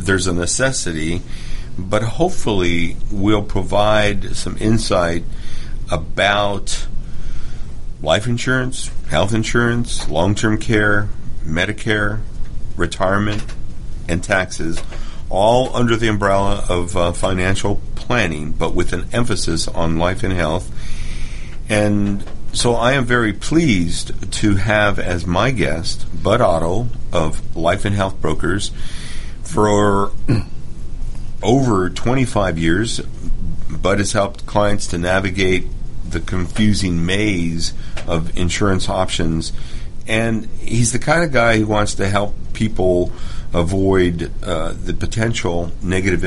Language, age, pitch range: English, 50-69, 85-110 Hz